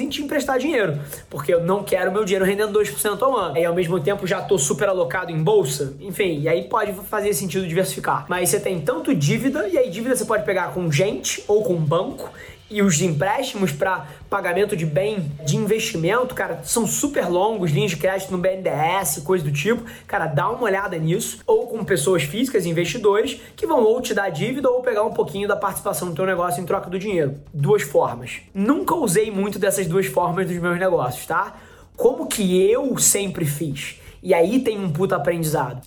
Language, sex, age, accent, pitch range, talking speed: Portuguese, male, 20-39, Brazilian, 170-215 Hz, 200 wpm